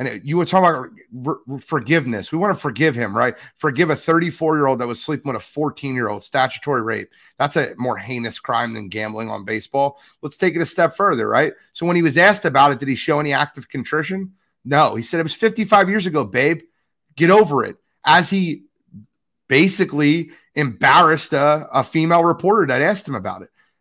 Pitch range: 135-190 Hz